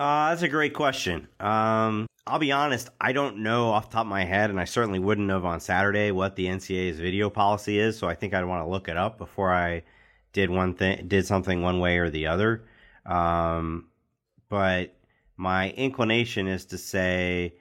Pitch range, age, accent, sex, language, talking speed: 85-100 Hz, 30-49, American, male, English, 200 wpm